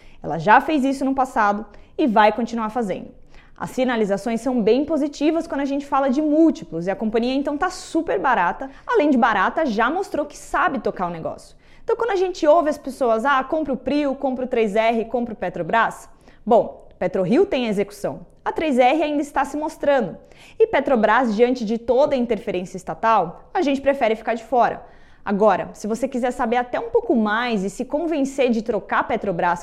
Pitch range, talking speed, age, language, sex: 220-295 Hz, 195 wpm, 20-39, English, female